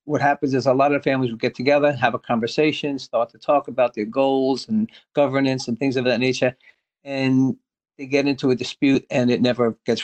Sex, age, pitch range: male, 50-69, 125-140 Hz